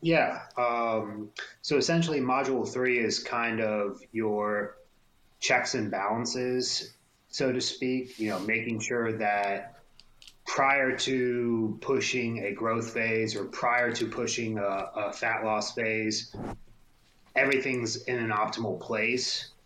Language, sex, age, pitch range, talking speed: English, male, 30-49, 105-120 Hz, 125 wpm